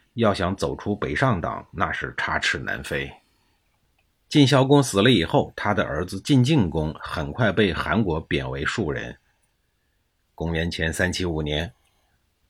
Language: Chinese